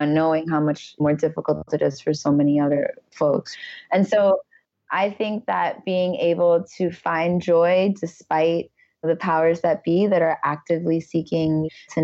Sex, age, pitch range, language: female, 20-39, 155-175 Hz, English